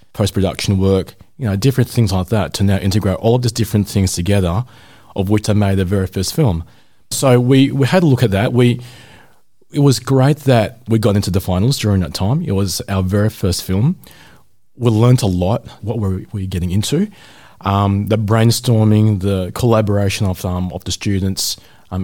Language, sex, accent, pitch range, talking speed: English, male, Australian, 95-120 Hz, 200 wpm